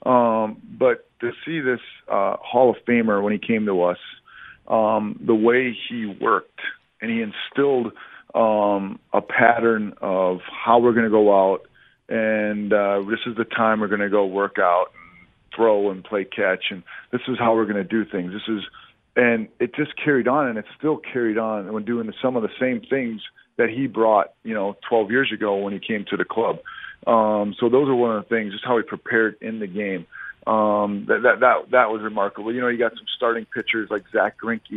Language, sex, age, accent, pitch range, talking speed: English, male, 40-59, American, 105-125 Hz, 215 wpm